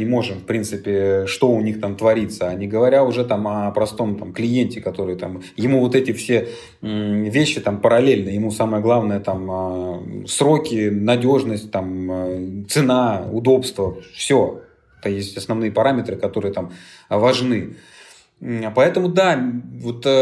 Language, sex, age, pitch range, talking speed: Russian, male, 30-49, 100-130 Hz, 140 wpm